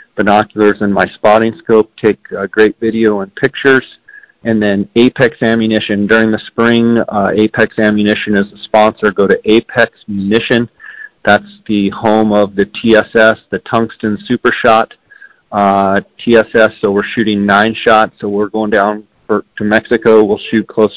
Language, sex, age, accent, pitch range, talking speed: English, male, 40-59, American, 100-115 Hz, 155 wpm